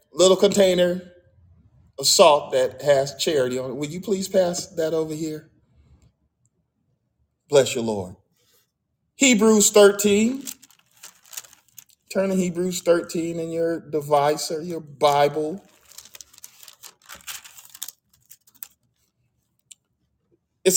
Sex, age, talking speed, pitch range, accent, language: male, 40-59, 90 wpm, 125-180 Hz, American, English